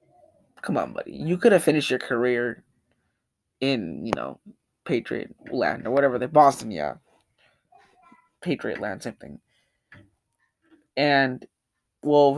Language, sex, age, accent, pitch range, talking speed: English, male, 20-39, American, 125-190 Hz, 120 wpm